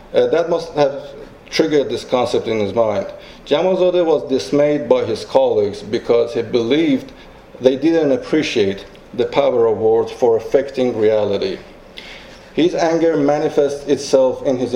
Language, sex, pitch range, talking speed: English, male, 130-170 Hz, 140 wpm